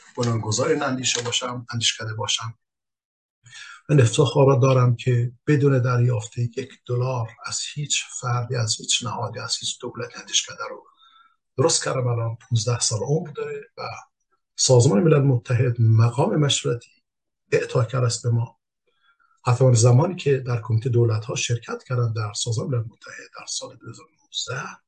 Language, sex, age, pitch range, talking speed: Persian, male, 50-69, 115-140 Hz, 145 wpm